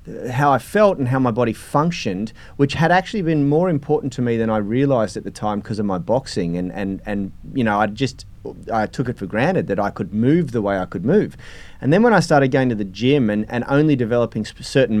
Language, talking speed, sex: English, 245 wpm, male